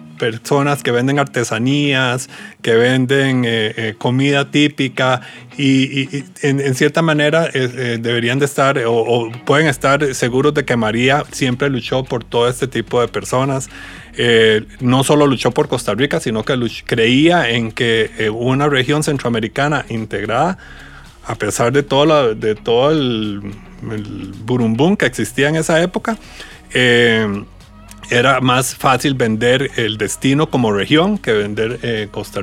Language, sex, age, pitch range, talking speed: Spanish, male, 30-49, 115-145 Hz, 155 wpm